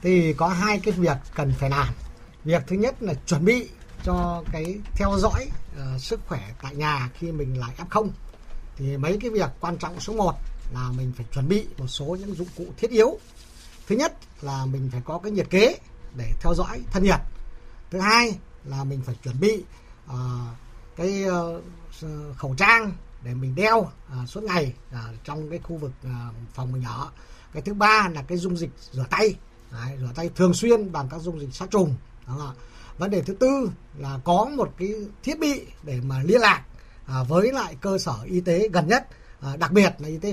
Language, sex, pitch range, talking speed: Vietnamese, male, 135-200 Hz, 200 wpm